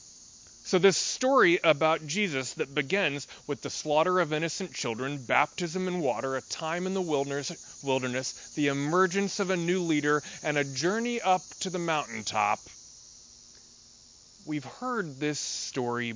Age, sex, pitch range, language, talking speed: 30-49, male, 120-175 Hz, English, 145 wpm